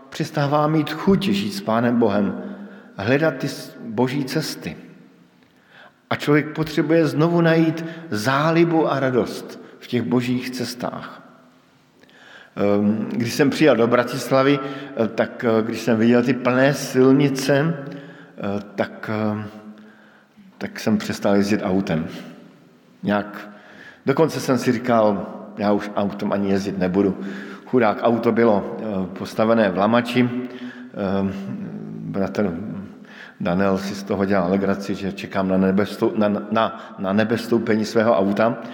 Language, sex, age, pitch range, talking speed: Slovak, male, 50-69, 105-130 Hz, 110 wpm